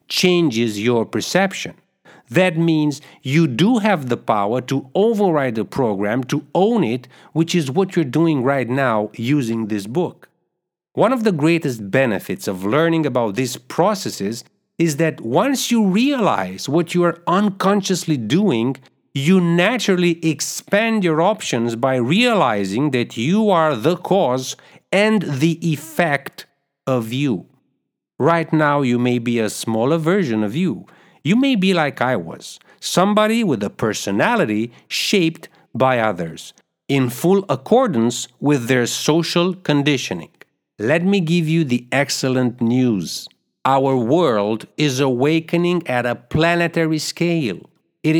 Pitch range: 125-180 Hz